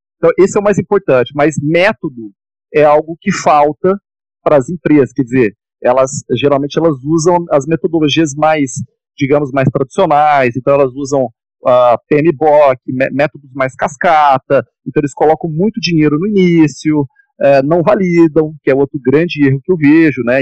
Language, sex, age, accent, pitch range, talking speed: Portuguese, male, 40-59, Brazilian, 135-170 Hz, 160 wpm